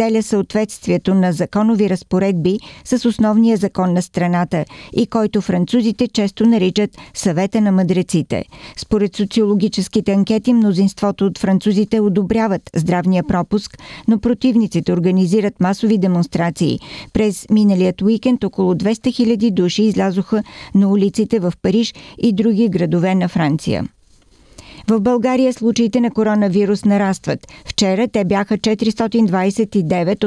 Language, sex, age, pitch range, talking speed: Bulgarian, female, 50-69, 185-220 Hz, 115 wpm